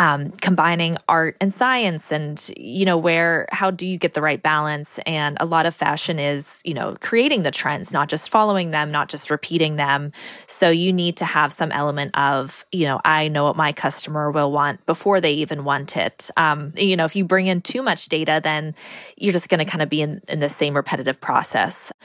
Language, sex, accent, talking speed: English, female, American, 220 wpm